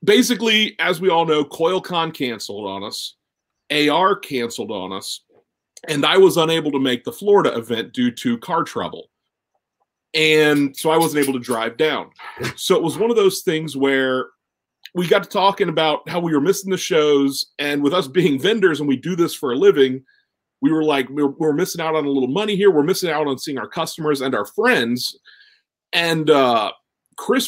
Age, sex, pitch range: 40-59, male, 135-170 Hz